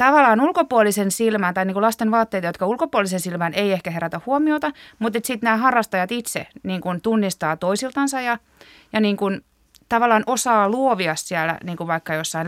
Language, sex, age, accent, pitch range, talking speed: Finnish, female, 30-49, native, 175-220 Hz, 135 wpm